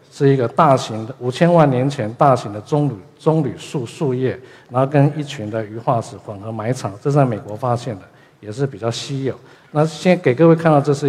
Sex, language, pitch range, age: male, Chinese, 115-140 Hz, 50-69